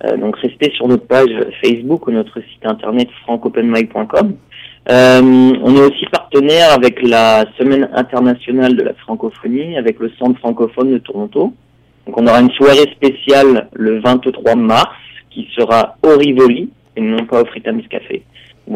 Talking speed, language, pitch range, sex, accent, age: 155 wpm, French, 115-135 Hz, male, French, 40-59